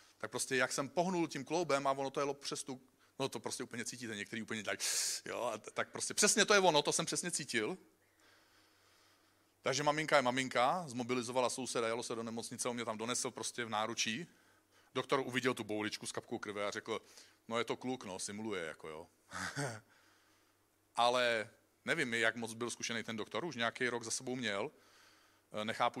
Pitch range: 110-130 Hz